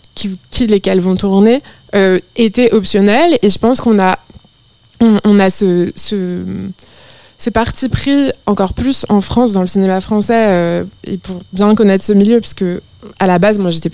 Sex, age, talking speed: female, 20-39, 180 wpm